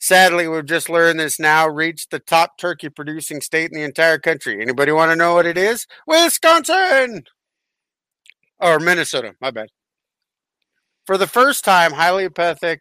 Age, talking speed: 50-69, 155 wpm